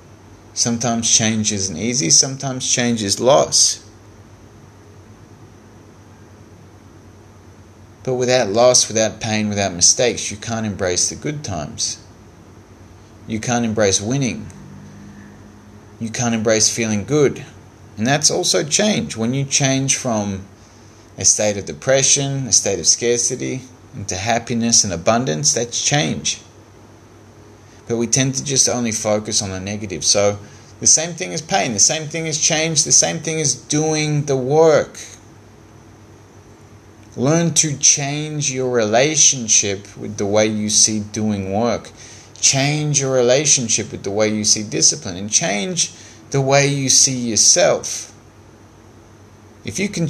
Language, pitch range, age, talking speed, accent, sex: English, 105-125 Hz, 30-49, 135 wpm, Australian, male